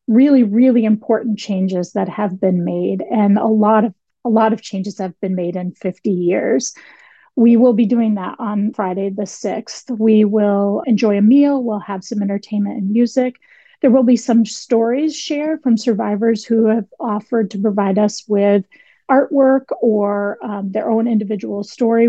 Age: 30-49